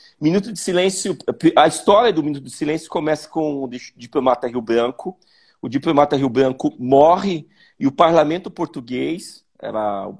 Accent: Brazilian